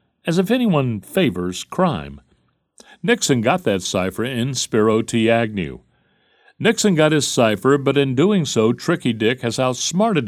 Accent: American